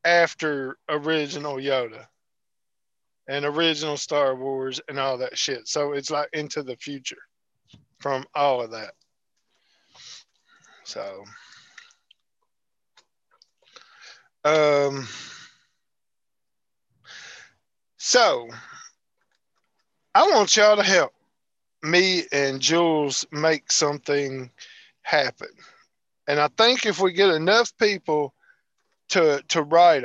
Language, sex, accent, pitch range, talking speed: English, male, American, 140-190 Hz, 90 wpm